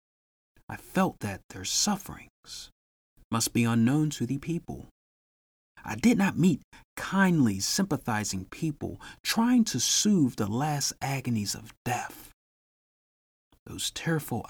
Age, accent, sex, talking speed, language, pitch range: 40-59, American, male, 115 wpm, English, 105-165 Hz